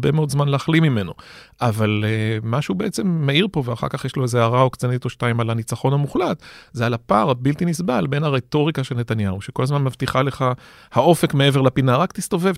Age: 40-59